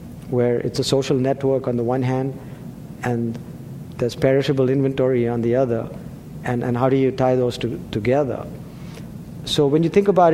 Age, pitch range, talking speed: 50-69, 125-145 Hz, 175 wpm